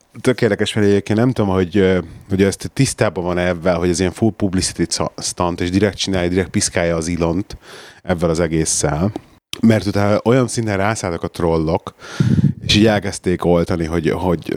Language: Hungarian